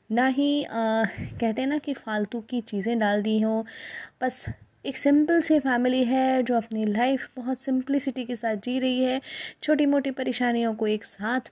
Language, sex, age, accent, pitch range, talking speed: Hindi, female, 20-39, native, 215-260 Hz, 170 wpm